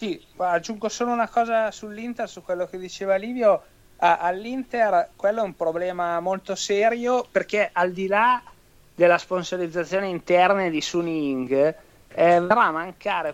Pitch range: 150-185 Hz